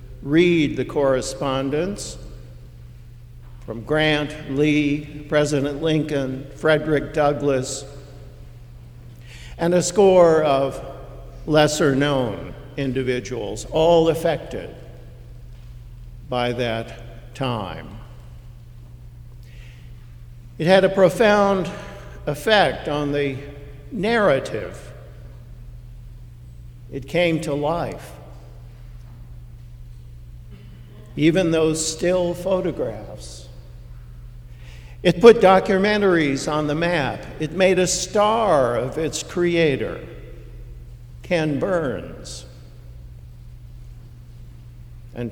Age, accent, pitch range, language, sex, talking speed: 60-79, American, 120-150 Hz, English, male, 70 wpm